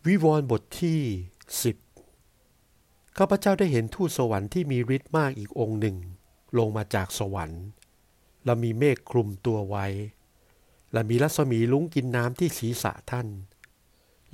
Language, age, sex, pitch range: Thai, 60-79, male, 110-140 Hz